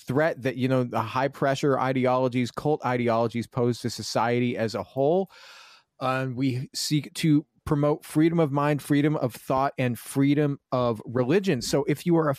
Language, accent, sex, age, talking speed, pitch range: English, American, male, 30-49, 175 wpm, 125-155 Hz